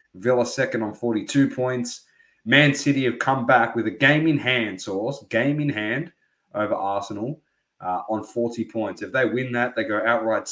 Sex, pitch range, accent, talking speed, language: male, 105-125 Hz, Australian, 185 wpm, English